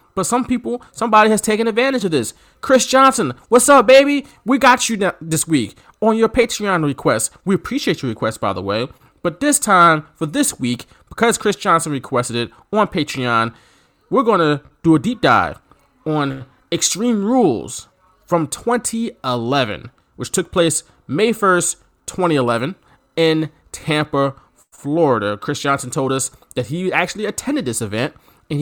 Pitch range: 145-215 Hz